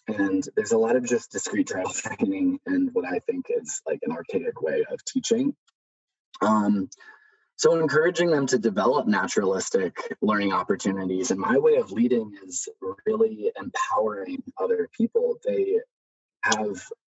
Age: 20-39